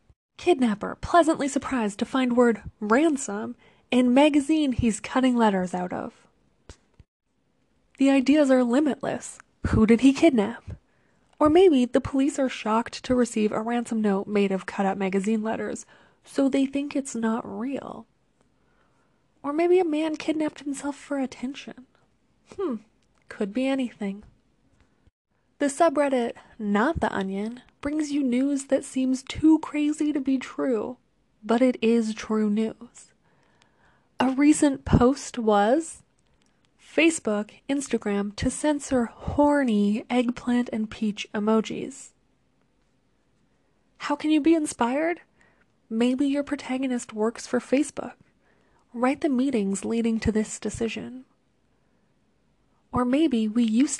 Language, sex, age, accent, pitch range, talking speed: English, female, 20-39, American, 225-285 Hz, 125 wpm